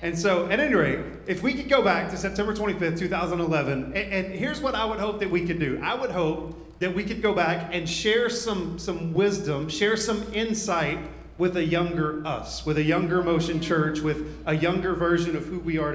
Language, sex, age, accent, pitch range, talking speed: English, male, 30-49, American, 155-195 Hz, 220 wpm